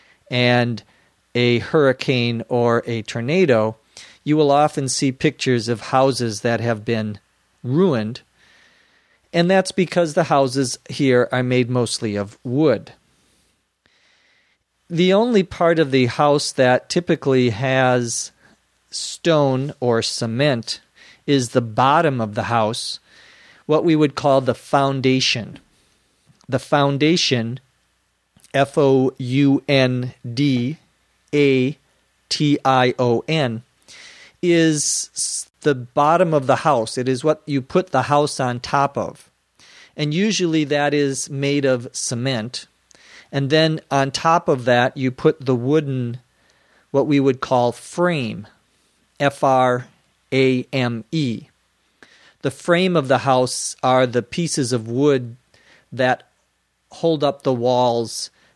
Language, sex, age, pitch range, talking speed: Portuguese, male, 40-59, 125-150 Hz, 110 wpm